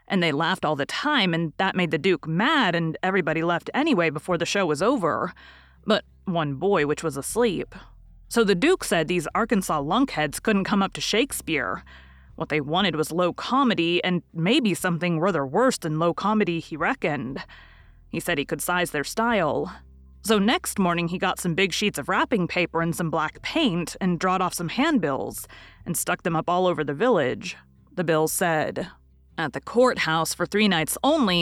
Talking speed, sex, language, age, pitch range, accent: 190 wpm, female, English, 30-49, 155-205 Hz, American